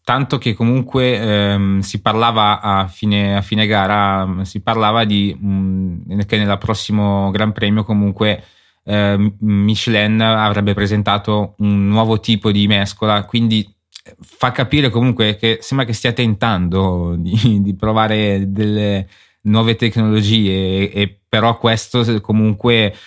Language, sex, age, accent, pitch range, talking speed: Italian, male, 20-39, native, 100-115 Hz, 130 wpm